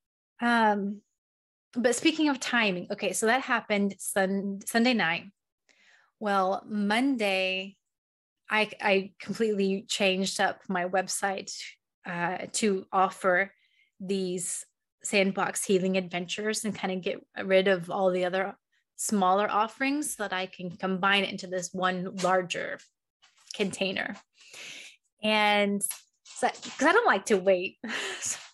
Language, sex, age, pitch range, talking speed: English, female, 20-39, 195-230 Hz, 125 wpm